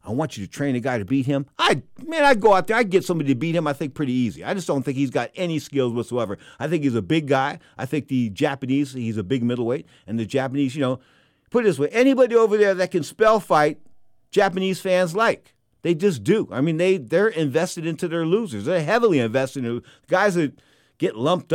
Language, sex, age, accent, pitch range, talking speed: English, male, 50-69, American, 120-180 Hz, 245 wpm